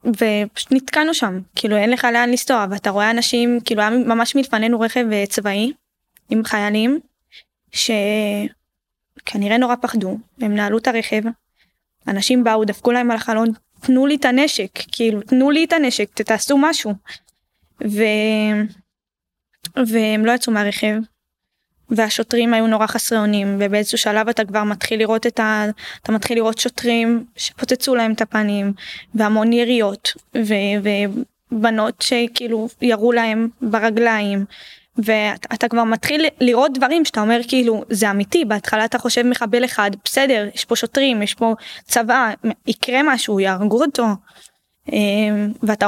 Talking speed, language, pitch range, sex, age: 140 wpm, Hebrew, 215-245 Hz, female, 10-29